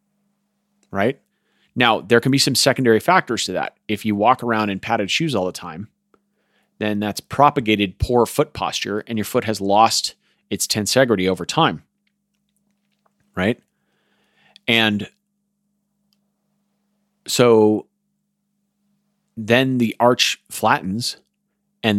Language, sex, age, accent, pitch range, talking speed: English, male, 30-49, American, 100-155 Hz, 115 wpm